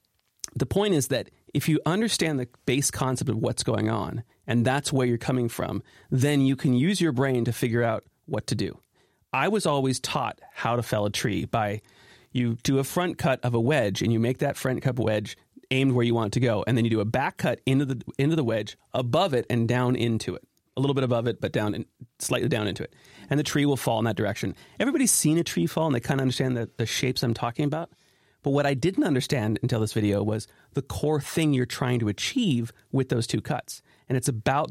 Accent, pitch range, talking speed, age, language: American, 115-140 Hz, 245 wpm, 30-49, English